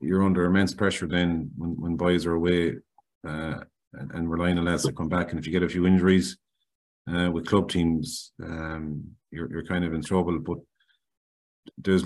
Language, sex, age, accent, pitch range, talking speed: English, male, 30-49, Irish, 80-90 Hz, 190 wpm